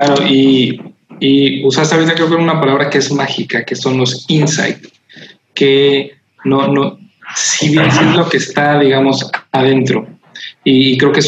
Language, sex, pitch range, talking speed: Spanish, male, 125-145 Hz, 155 wpm